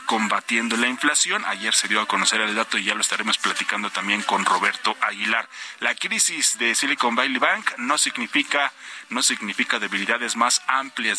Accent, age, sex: Mexican, 40-59, male